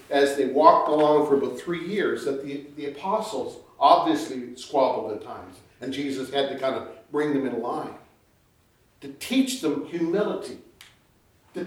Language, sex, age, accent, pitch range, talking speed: English, male, 50-69, American, 145-210 Hz, 160 wpm